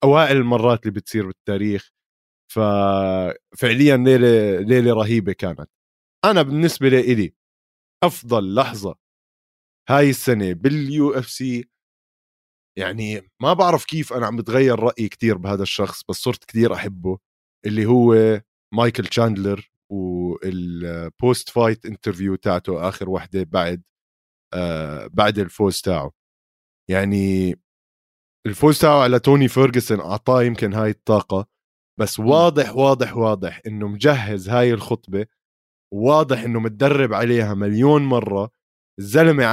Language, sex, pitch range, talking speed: Arabic, male, 100-130 Hz, 115 wpm